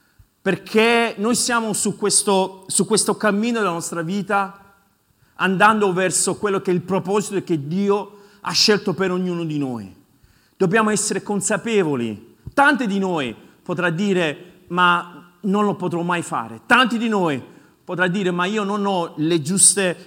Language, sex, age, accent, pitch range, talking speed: Italian, male, 40-59, native, 180-230 Hz, 155 wpm